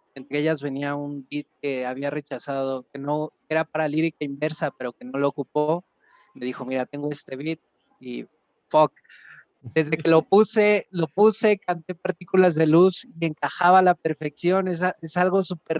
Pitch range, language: 135-165 Hz, Spanish